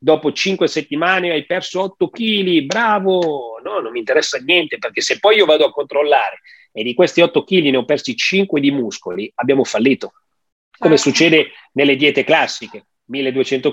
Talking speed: 170 wpm